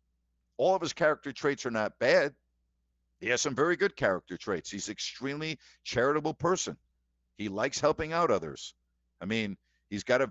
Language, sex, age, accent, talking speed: English, male, 60-79, American, 175 wpm